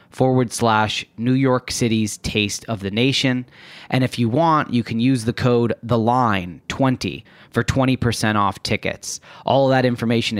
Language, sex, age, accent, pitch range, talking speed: English, male, 30-49, American, 110-130 Hz, 165 wpm